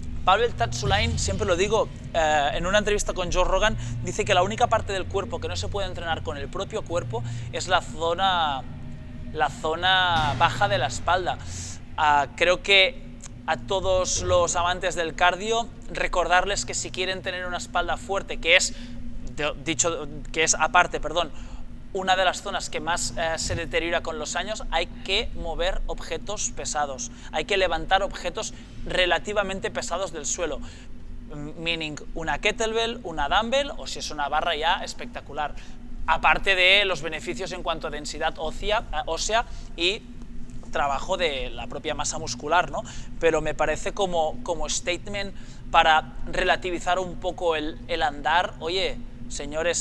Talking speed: 155 wpm